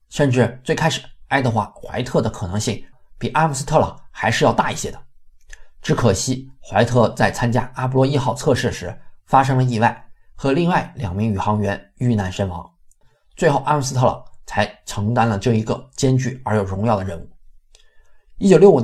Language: Chinese